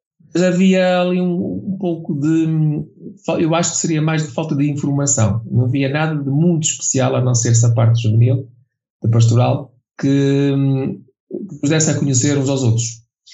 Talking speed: 170 wpm